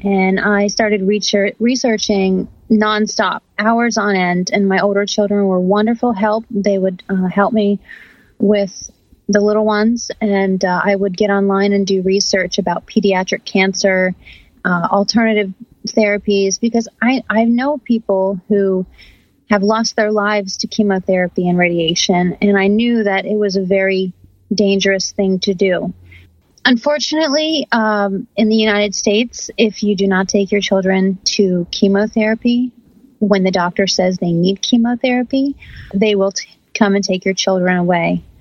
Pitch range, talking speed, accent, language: 190-220 Hz, 150 wpm, American, English